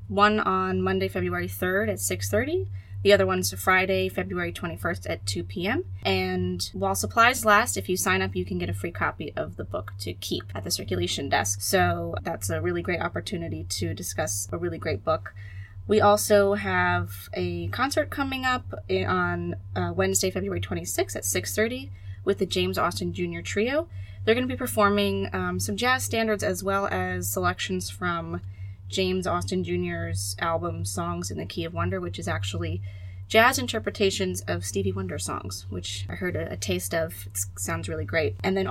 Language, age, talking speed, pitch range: English, 20-39, 180 wpm, 90-100 Hz